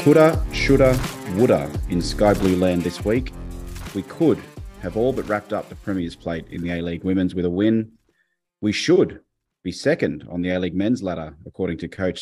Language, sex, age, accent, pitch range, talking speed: English, male, 30-49, Australian, 90-115 Hz, 185 wpm